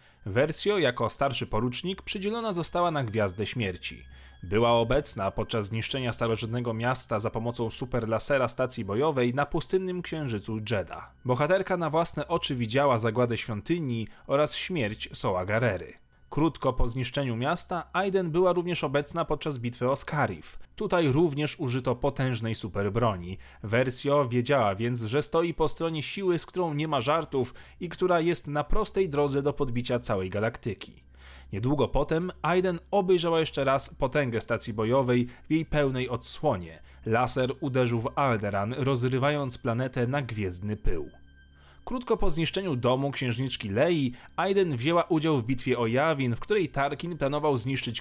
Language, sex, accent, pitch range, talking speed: Polish, male, native, 115-155 Hz, 145 wpm